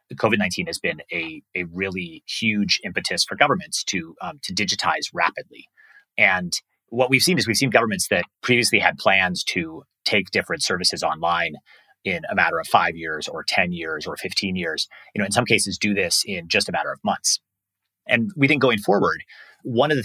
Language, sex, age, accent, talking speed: English, male, 30-49, American, 195 wpm